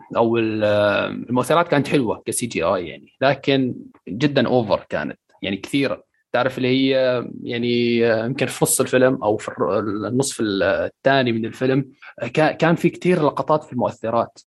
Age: 20-39